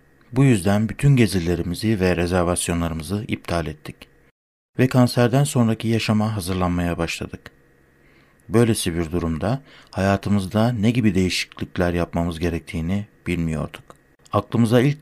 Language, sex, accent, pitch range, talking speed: Turkish, male, native, 85-115 Hz, 105 wpm